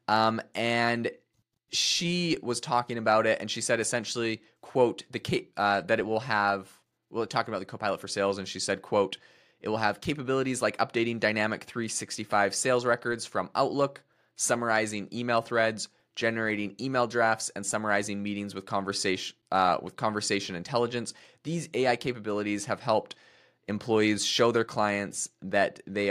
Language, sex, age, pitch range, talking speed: English, male, 20-39, 100-120 Hz, 160 wpm